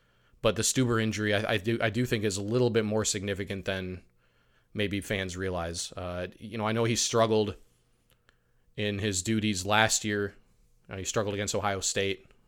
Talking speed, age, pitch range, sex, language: 185 wpm, 20-39, 95-115 Hz, male, English